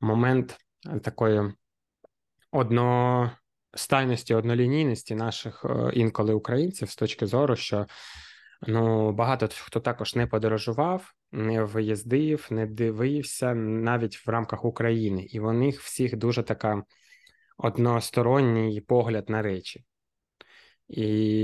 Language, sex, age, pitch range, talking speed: Ukrainian, male, 20-39, 105-125 Hz, 100 wpm